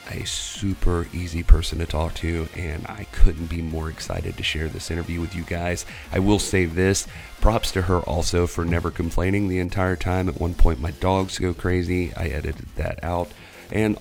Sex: male